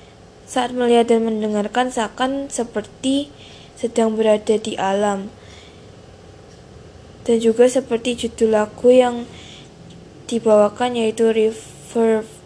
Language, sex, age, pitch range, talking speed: Indonesian, female, 20-39, 210-240 Hz, 90 wpm